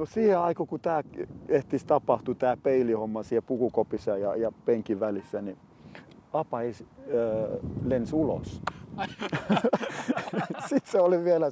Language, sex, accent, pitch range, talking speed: Finnish, male, native, 110-140 Hz, 120 wpm